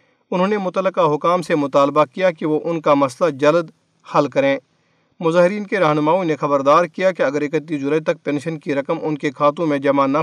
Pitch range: 145-170 Hz